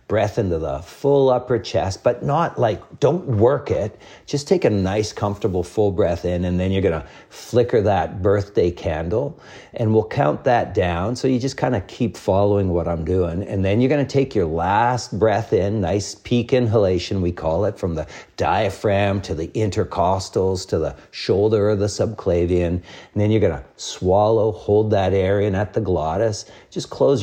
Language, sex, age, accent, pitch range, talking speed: English, male, 50-69, American, 90-110 Hz, 190 wpm